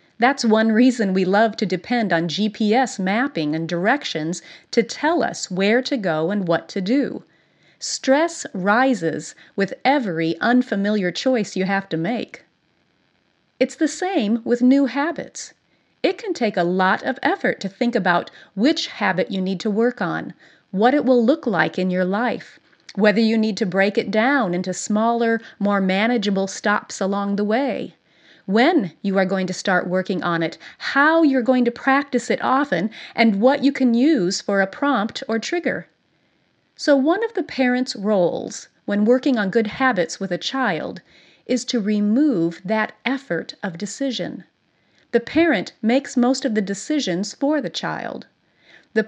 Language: English